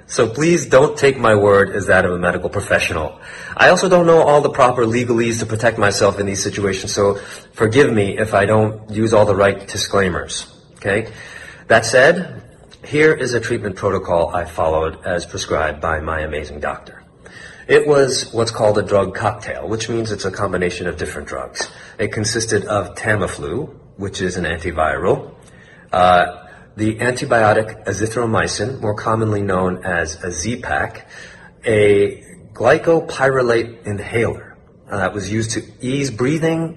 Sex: male